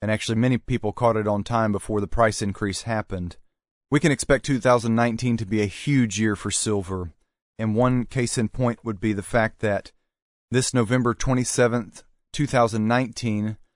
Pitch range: 100-120 Hz